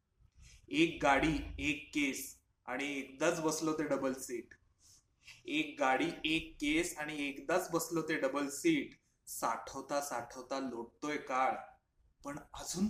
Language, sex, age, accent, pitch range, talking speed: Marathi, male, 20-39, native, 120-170 Hz, 120 wpm